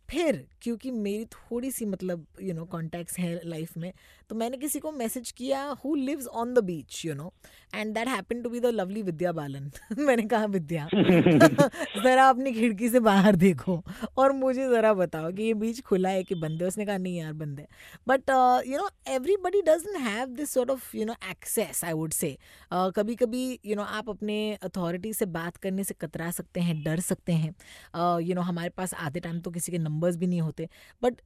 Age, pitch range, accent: 20-39, 175-240 Hz, native